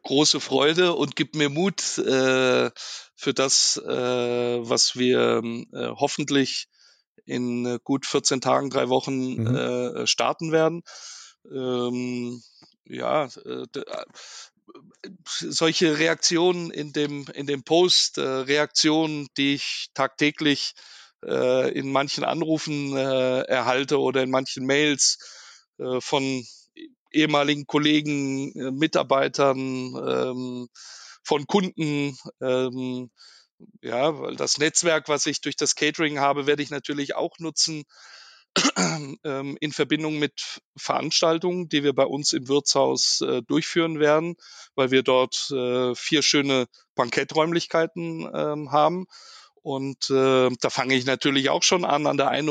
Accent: German